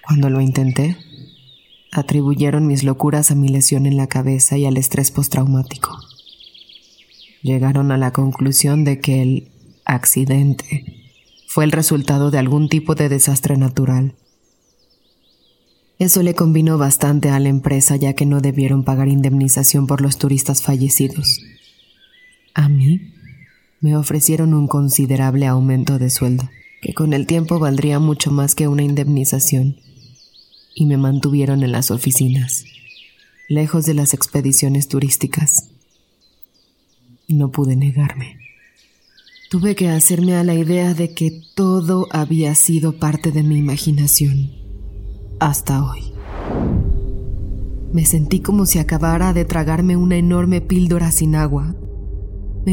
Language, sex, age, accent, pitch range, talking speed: Spanish, female, 20-39, Mexican, 135-165 Hz, 130 wpm